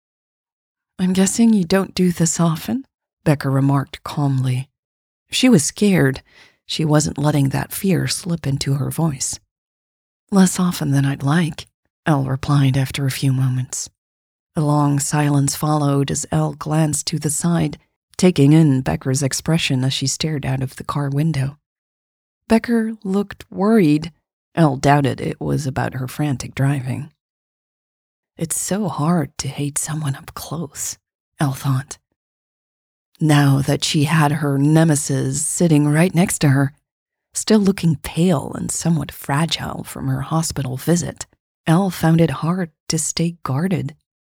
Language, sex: English, female